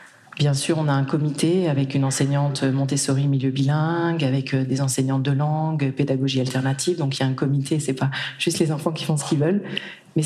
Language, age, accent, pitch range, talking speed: French, 40-59, French, 135-165 Hz, 210 wpm